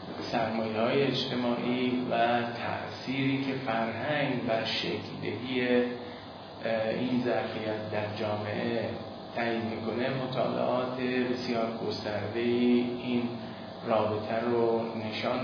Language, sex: Persian, male